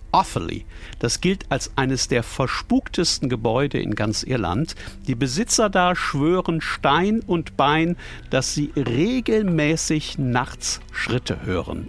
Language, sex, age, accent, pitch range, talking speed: German, male, 60-79, German, 120-165 Hz, 115 wpm